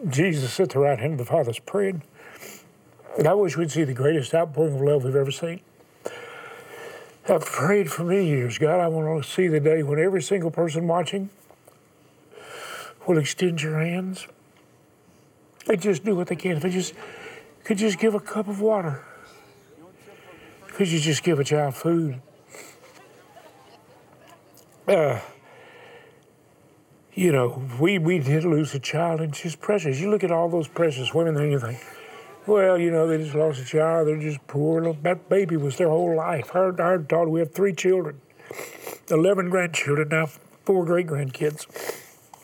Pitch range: 155-200 Hz